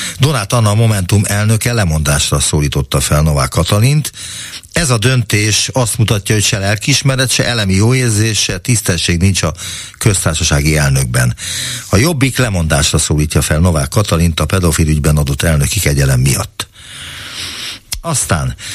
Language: Hungarian